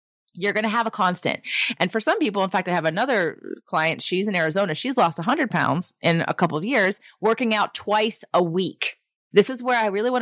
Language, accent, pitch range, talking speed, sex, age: English, American, 175-245 Hz, 230 wpm, female, 30-49